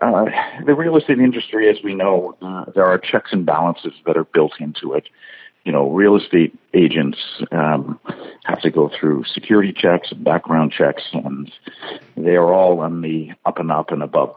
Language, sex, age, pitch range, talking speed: English, male, 50-69, 85-105 Hz, 190 wpm